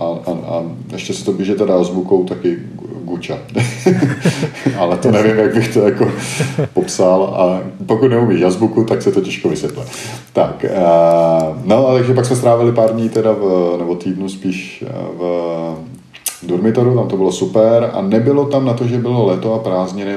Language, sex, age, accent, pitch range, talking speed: Czech, male, 40-59, native, 85-100 Hz, 175 wpm